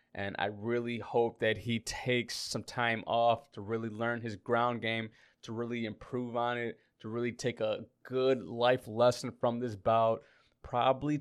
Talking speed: 170 wpm